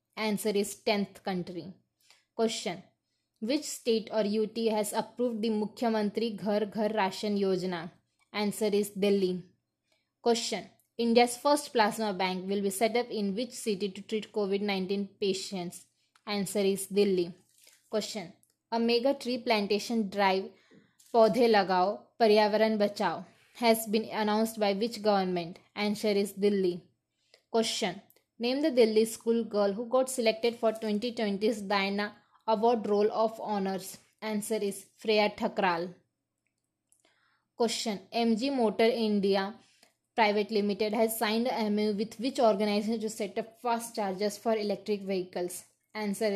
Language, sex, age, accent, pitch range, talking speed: English, female, 20-39, Indian, 200-225 Hz, 130 wpm